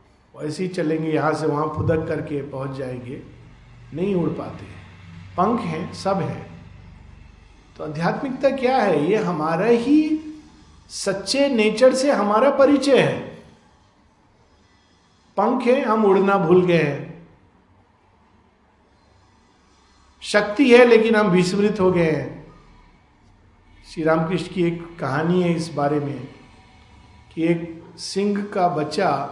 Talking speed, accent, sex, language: 120 wpm, native, male, Hindi